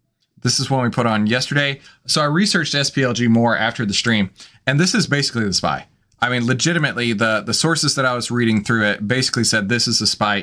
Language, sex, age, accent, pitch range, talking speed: English, male, 20-39, American, 105-140 Hz, 225 wpm